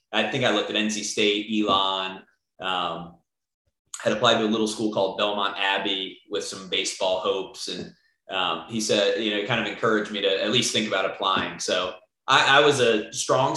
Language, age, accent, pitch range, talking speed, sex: English, 30-49, American, 100-115 Hz, 200 wpm, male